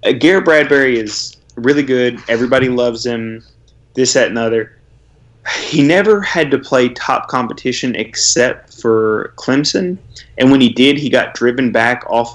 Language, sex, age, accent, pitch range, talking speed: English, male, 20-39, American, 115-130 Hz, 155 wpm